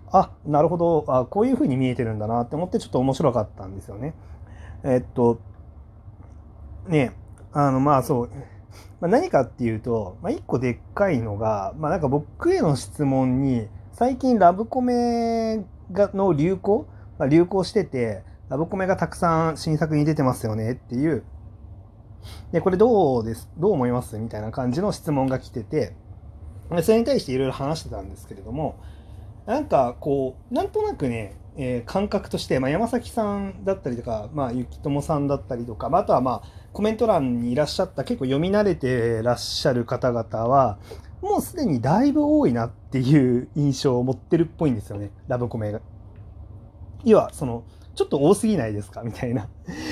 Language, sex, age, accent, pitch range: Japanese, male, 30-49, native, 105-170 Hz